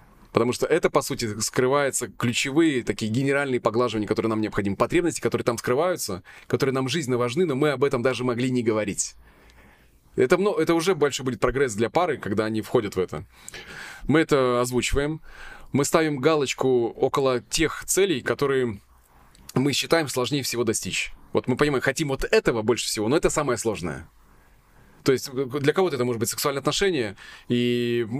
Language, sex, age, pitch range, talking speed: Russian, male, 20-39, 115-145 Hz, 170 wpm